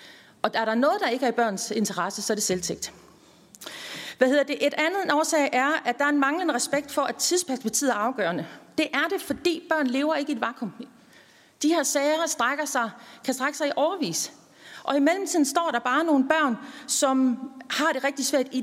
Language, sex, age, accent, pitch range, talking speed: Danish, female, 40-59, native, 220-285 Hz, 215 wpm